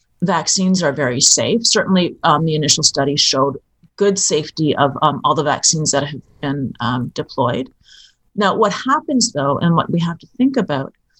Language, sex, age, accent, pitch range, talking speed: English, female, 40-59, American, 145-190 Hz, 175 wpm